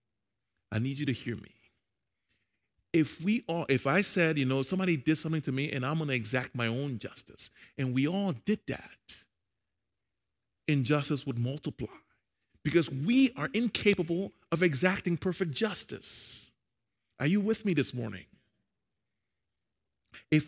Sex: male